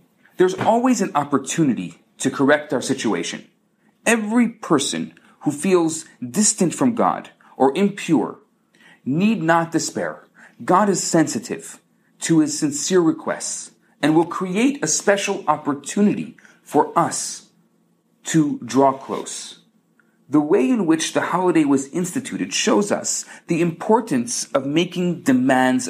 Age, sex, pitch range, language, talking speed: 40-59, male, 140-215 Hz, English, 125 wpm